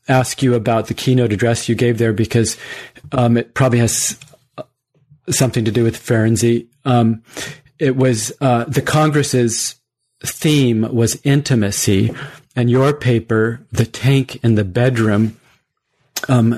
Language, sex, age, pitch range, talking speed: English, male, 40-59, 110-130 Hz, 135 wpm